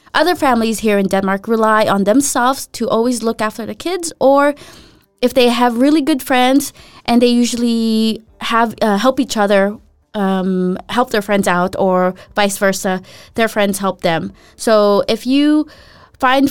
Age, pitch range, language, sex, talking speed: 20-39, 200-260 Hz, English, female, 165 wpm